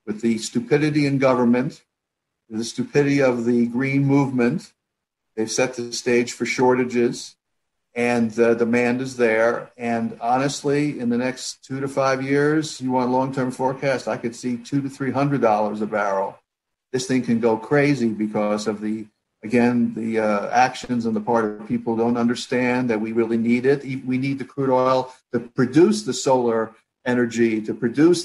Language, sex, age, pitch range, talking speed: English, male, 50-69, 120-135 Hz, 175 wpm